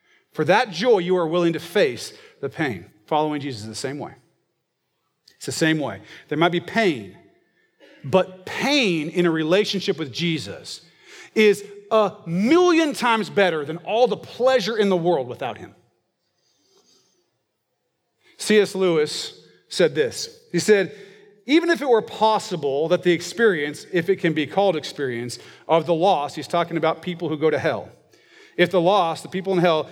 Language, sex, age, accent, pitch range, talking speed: English, male, 40-59, American, 165-230 Hz, 165 wpm